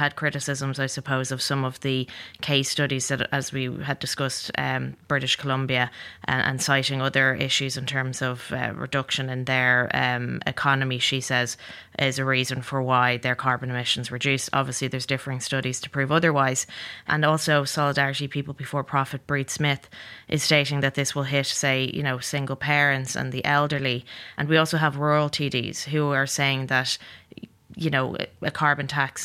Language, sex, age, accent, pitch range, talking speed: English, female, 20-39, Irish, 130-145 Hz, 180 wpm